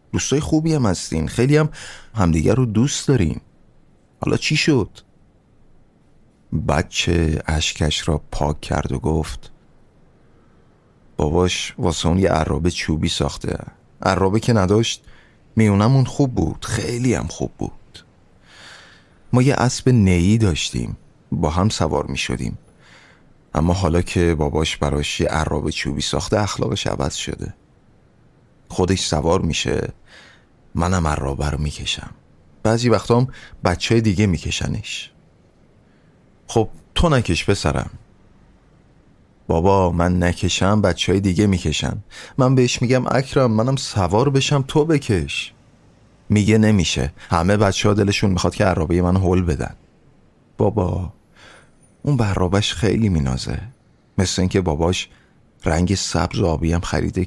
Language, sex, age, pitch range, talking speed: Persian, male, 30-49, 85-115 Hz, 120 wpm